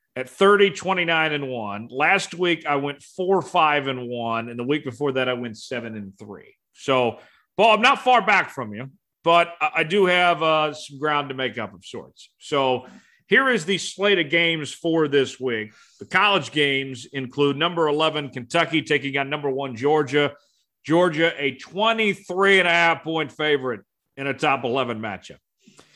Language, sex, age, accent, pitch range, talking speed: English, male, 40-59, American, 140-190 Hz, 180 wpm